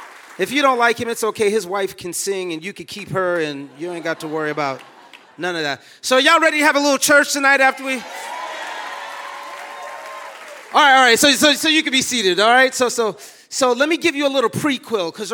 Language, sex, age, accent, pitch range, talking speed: English, male, 30-49, American, 210-275 Hz, 240 wpm